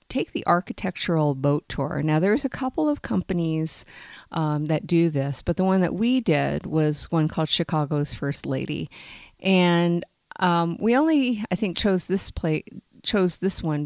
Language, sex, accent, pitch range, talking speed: English, female, American, 145-175 Hz, 170 wpm